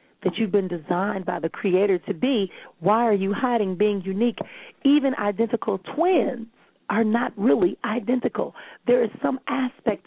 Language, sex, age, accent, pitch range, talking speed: English, female, 40-59, American, 185-240 Hz, 155 wpm